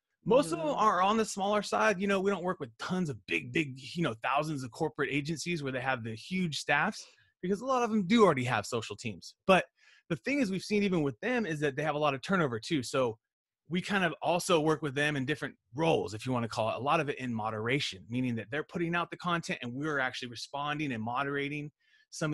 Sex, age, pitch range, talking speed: male, 30-49, 130-180 Hz, 255 wpm